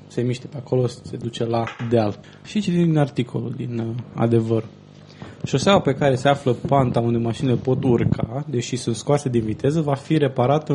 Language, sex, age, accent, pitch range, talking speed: Romanian, male, 20-39, native, 120-150 Hz, 185 wpm